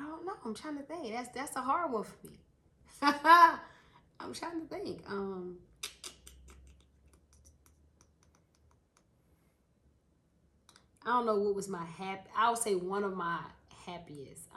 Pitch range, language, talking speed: 185-250 Hz, English, 135 wpm